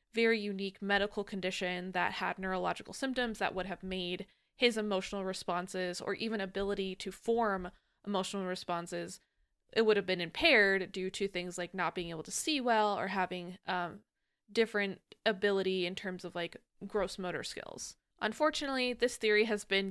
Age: 20-39